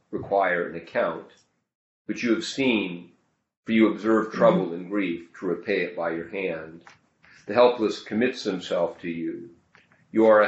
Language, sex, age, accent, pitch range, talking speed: English, male, 40-59, American, 85-110 Hz, 160 wpm